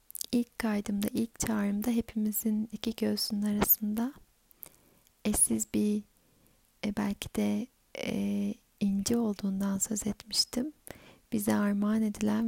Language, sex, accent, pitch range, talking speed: Turkish, female, native, 205-230 Hz, 90 wpm